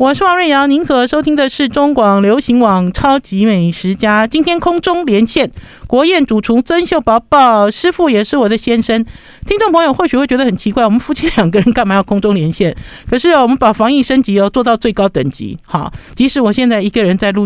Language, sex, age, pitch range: Chinese, male, 50-69, 185-260 Hz